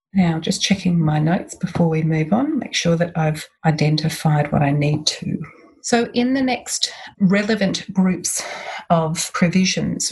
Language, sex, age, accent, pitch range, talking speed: English, female, 40-59, Australian, 160-195 Hz, 155 wpm